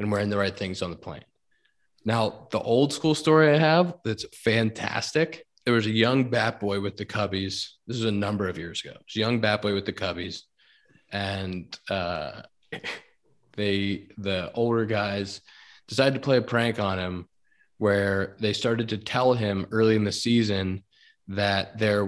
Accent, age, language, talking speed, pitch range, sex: American, 20-39, English, 180 wpm, 100-115 Hz, male